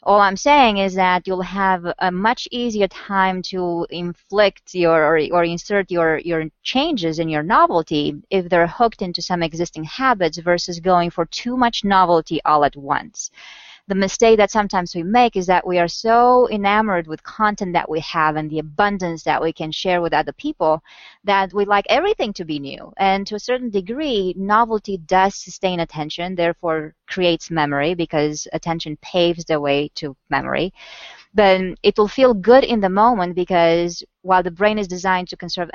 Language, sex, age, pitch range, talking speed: English, female, 20-39, 165-200 Hz, 180 wpm